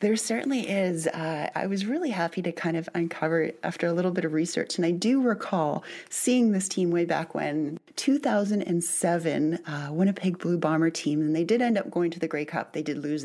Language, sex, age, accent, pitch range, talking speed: English, female, 30-49, American, 155-190 Hz, 215 wpm